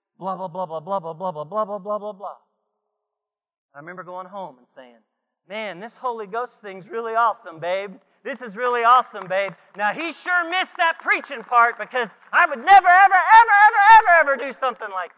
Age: 40-59